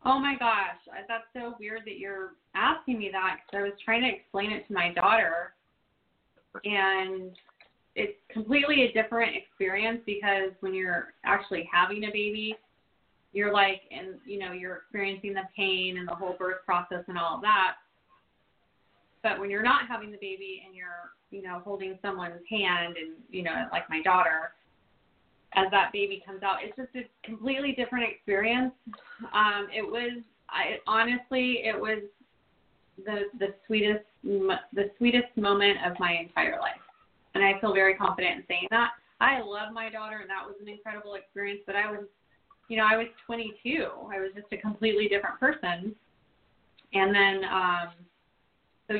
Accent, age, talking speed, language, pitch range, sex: American, 20-39, 170 wpm, English, 190-225 Hz, female